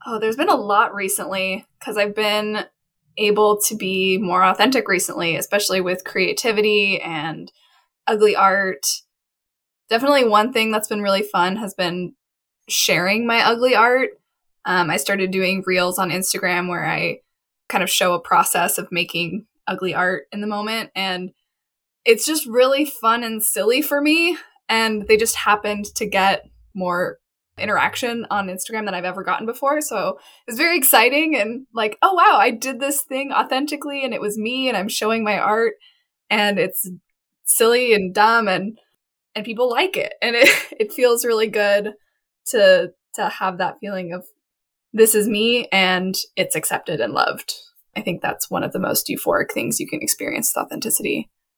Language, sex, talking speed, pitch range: English, female, 170 wpm, 190-255 Hz